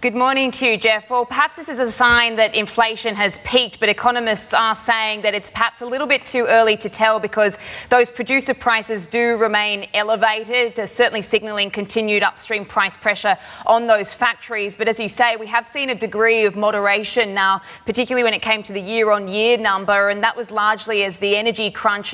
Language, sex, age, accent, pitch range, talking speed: English, female, 20-39, Australian, 200-225 Hz, 205 wpm